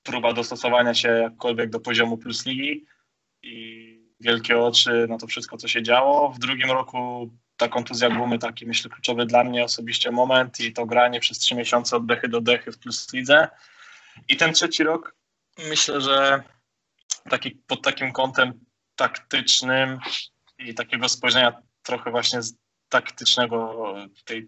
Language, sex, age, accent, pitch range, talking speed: Polish, male, 20-39, native, 115-125 Hz, 155 wpm